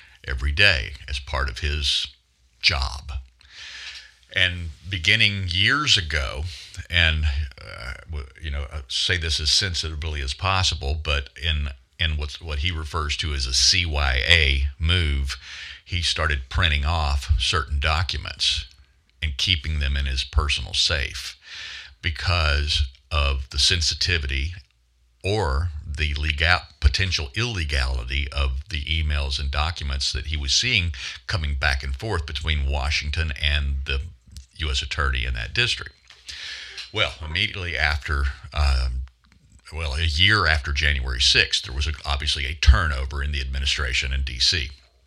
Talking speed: 130 wpm